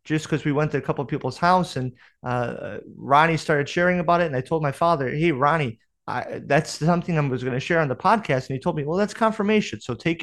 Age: 30-49